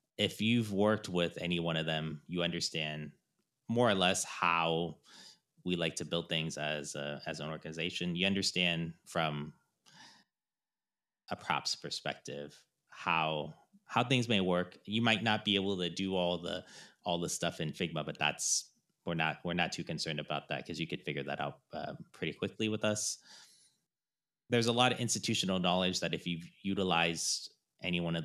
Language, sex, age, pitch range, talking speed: English, male, 30-49, 80-100 Hz, 175 wpm